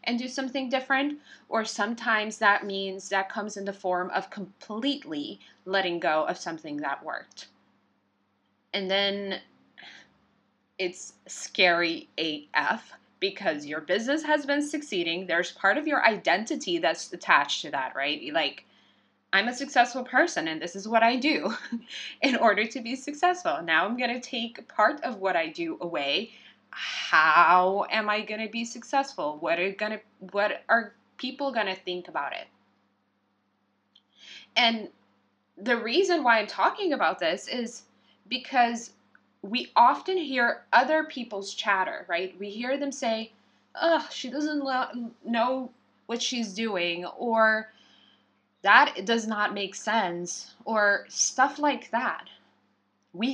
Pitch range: 185-255 Hz